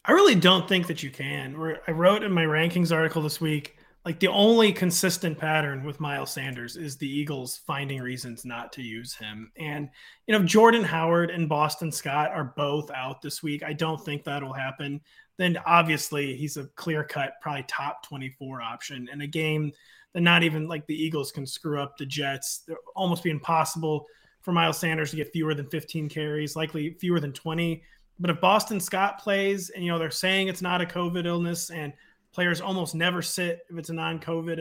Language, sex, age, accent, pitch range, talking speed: English, male, 30-49, American, 145-175 Hz, 200 wpm